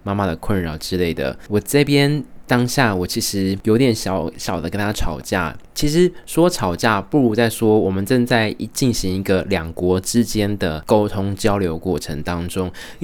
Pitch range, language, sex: 90-120 Hz, Chinese, male